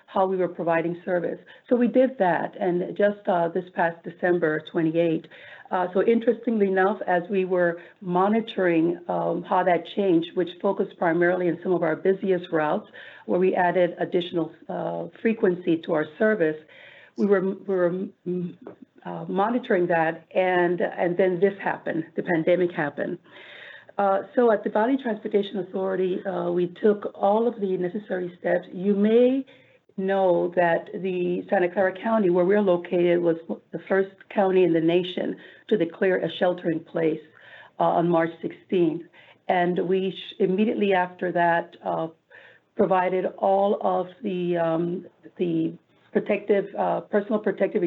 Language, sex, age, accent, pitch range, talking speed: English, female, 50-69, American, 170-195 Hz, 150 wpm